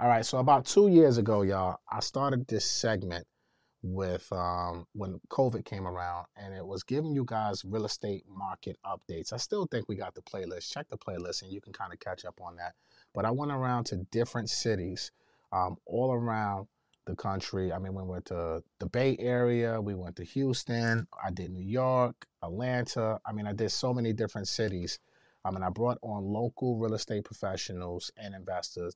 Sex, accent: male, American